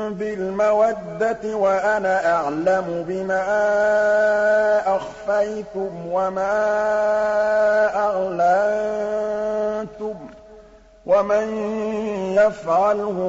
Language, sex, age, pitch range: Arabic, male, 50-69, 170-205 Hz